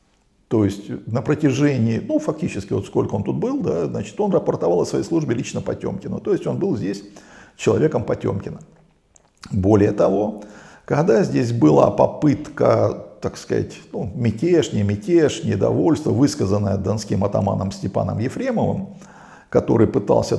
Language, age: Russian, 50-69